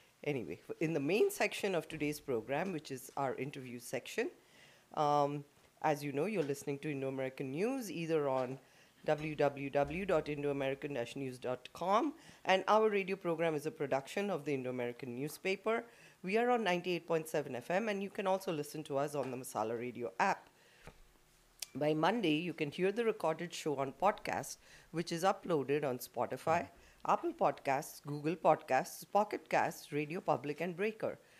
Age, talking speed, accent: 40-59, 150 wpm, Indian